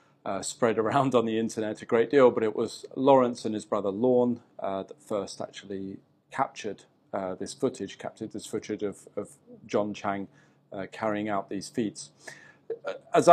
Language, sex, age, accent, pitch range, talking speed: English, male, 40-59, British, 100-130 Hz, 170 wpm